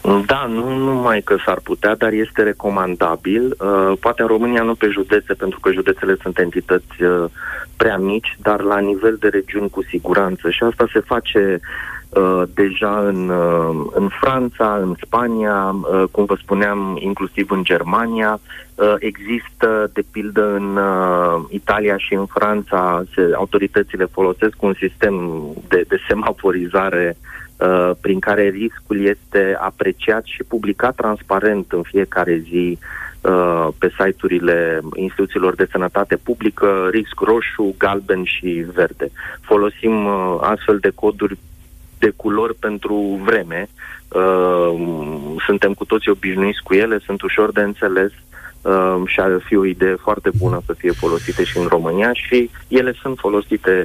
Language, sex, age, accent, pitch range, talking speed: Romanian, male, 30-49, native, 95-110 Hz, 140 wpm